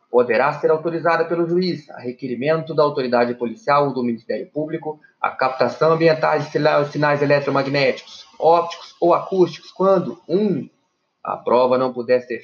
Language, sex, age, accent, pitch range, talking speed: Portuguese, male, 30-49, Brazilian, 130-160 Hz, 150 wpm